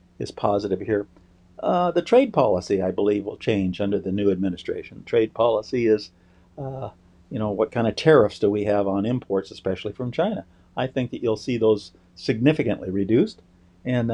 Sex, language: male, English